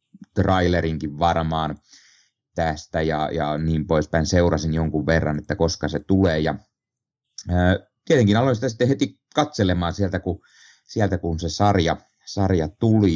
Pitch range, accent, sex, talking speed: 85-105 Hz, native, male, 130 wpm